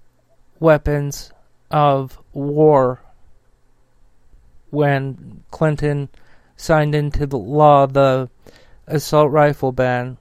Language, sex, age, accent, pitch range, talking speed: English, male, 40-59, American, 135-155 Hz, 75 wpm